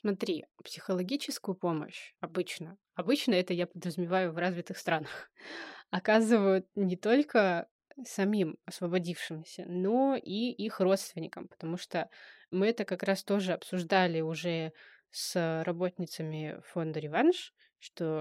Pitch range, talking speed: 175-215 Hz, 110 wpm